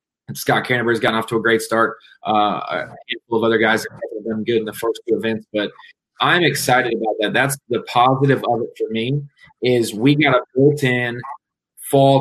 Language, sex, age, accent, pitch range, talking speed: English, male, 20-39, American, 120-145 Hz, 190 wpm